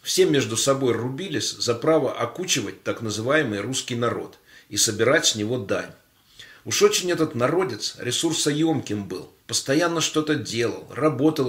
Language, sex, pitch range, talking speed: Russian, male, 105-150 Hz, 135 wpm